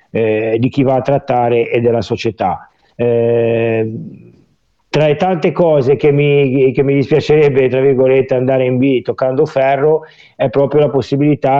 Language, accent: Italian, native